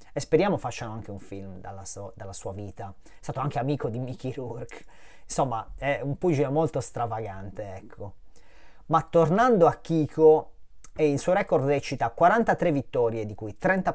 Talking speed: 170 wpm